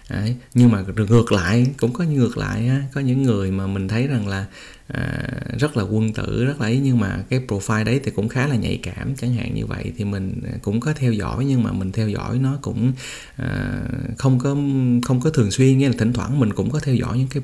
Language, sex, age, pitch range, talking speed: Vietnamese, male, 20-39, 100-130 Hz, 250 wpm